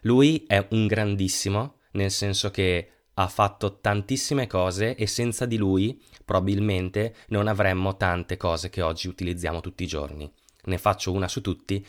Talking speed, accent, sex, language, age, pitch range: 155 wpm, native, male, Italian, 20-39, 90-105 Hz